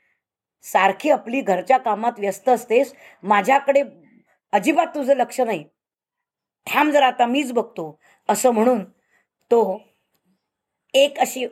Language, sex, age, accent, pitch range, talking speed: Marathi, female, 20-39, native, 200-255 Hz, 110 wpm